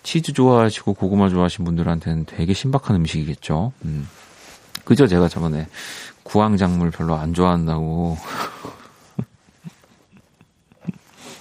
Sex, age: male, 40-59